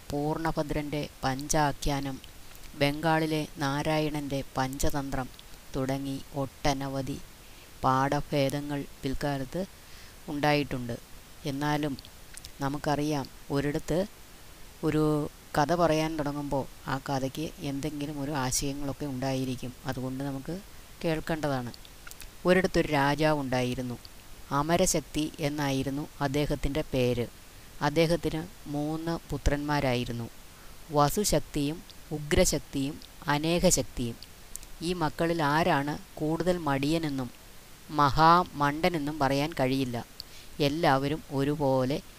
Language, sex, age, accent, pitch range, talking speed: Malayalam, female, 20-39, native, 135-155 Hz, 70 wpm